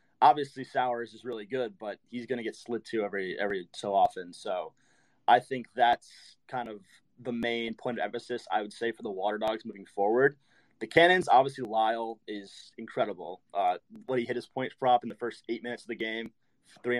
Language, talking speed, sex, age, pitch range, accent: English, 205 wpm, male, 20-39, 110-140 Hz, American